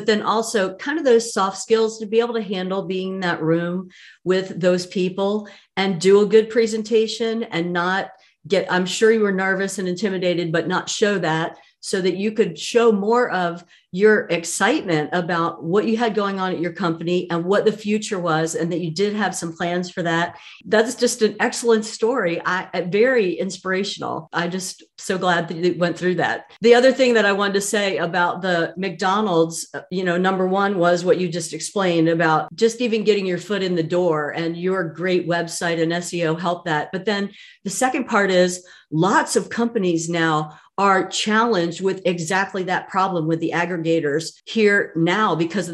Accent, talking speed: American, 195 wpm